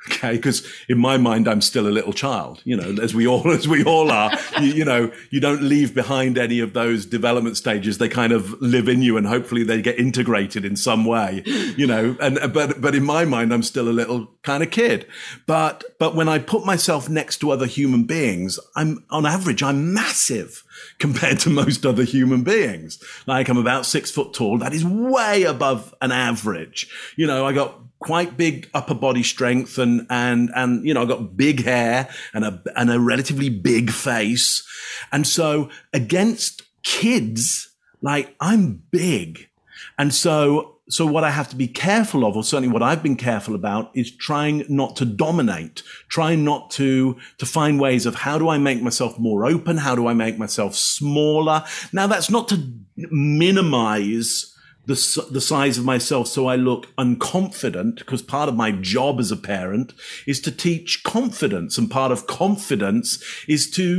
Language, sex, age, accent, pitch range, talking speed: English, male, 40-59, British, 120-155 Hz, 190 wpm